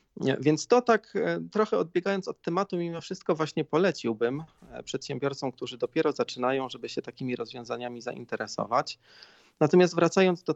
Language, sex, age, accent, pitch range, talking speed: Polish, male, 40-59, native, 120-160 Hz, 130 wpm